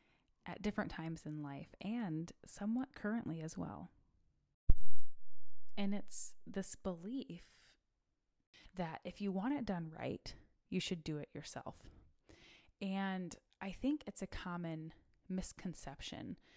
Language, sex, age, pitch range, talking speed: English, female, 20-39, 160-200 Hz, 120 wpm